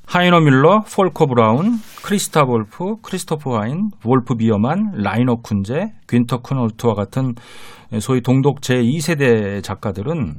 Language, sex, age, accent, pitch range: Korean, male, 40-59, native, 115-165 Hz